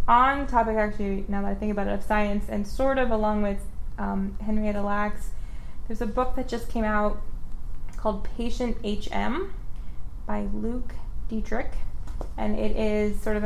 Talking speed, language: 165 wpm, English